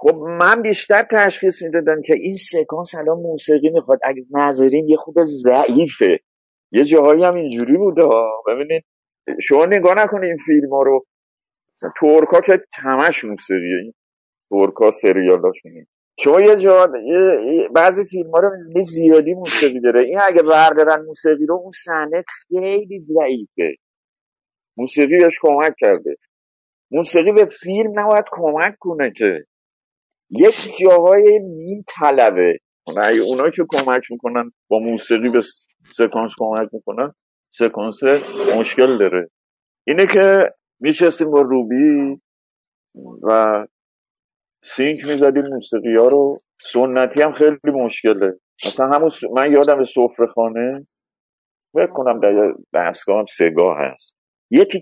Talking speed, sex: 125 wpm, male